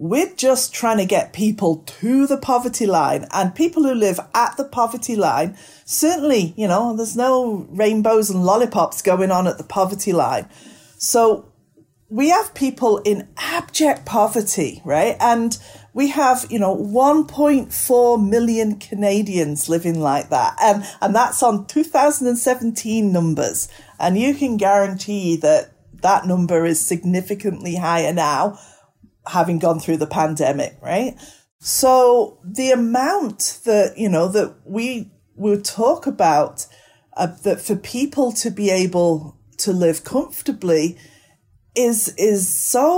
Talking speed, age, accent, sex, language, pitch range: 140 wpm, 40-59, British, female, English, 175-245 Hz